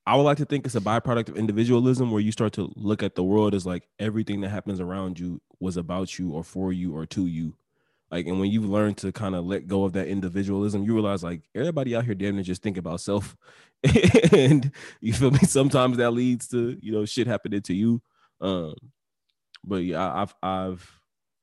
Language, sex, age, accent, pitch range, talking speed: English, male, 20-39, American, 95-110 Hz, 215 wpm